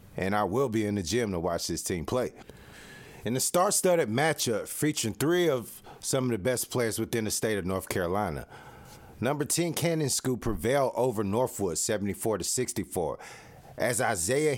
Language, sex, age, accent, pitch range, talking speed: English, male, 40-59, American, 100-130 Hz, 175 wpm